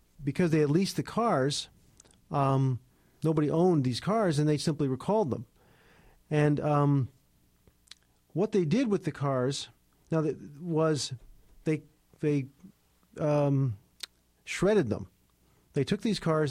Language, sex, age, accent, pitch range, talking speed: English, male, 40-59, American, 130-155 Hz, 130 wpm